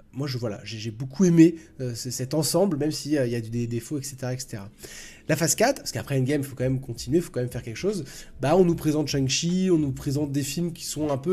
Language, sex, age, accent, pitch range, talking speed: French, male, 20-39, French, 125-170 Hz, 275 wpm